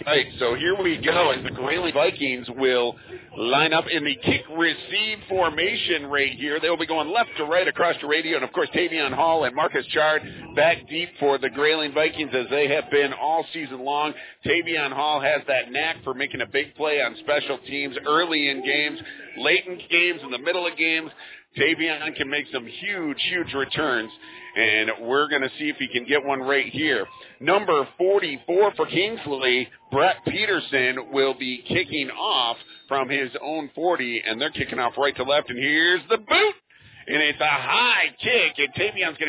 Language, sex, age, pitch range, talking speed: English, male, 50-69, 140-185 Hz, 190 wpm